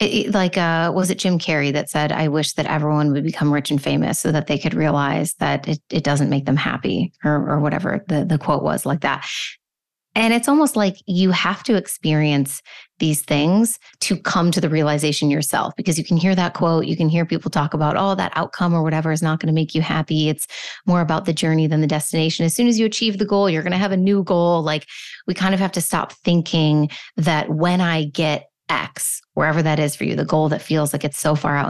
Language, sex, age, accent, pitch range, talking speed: English, female, 30-49, American, 150-180 Hz, 240 wpm